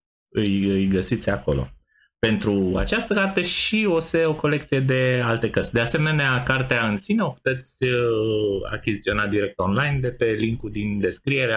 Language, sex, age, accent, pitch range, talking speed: Romanian, male, 20-39, native, 100-140 Hz, 160 wpm